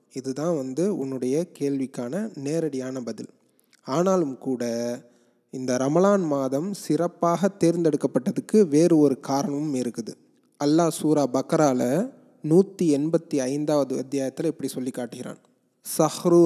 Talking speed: 95 wpm